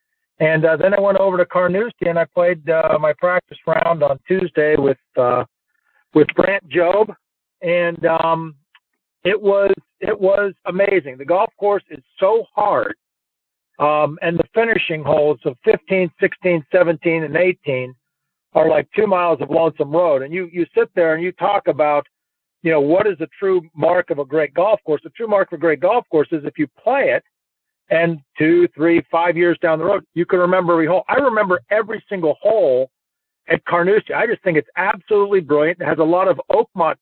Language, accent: English, American